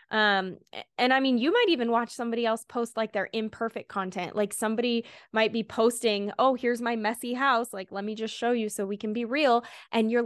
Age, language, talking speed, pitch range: 10-29, English, 220 wpm, 195-235 Hz